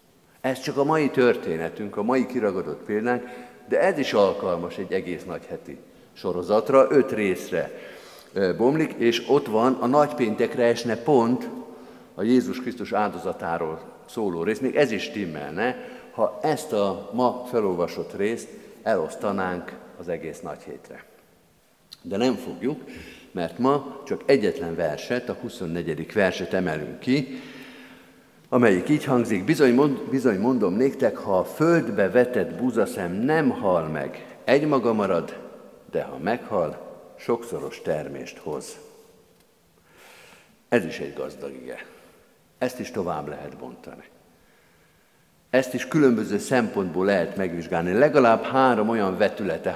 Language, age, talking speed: Hungarian, 50-69, 130 wpm